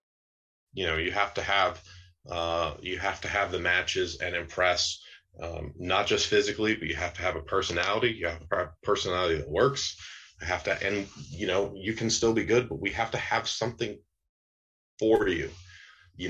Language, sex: English, male